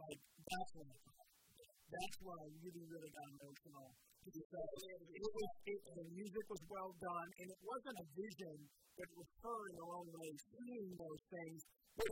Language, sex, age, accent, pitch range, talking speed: English, male, 50-69, American, 145-190 Hz, 150 wpm